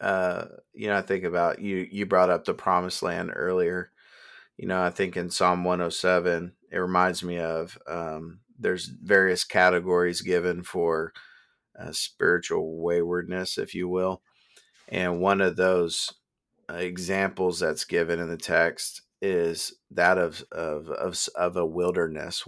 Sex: male